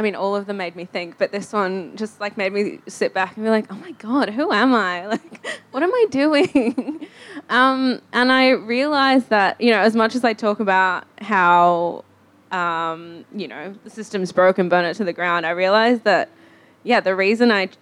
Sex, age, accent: female, 20-39, Australian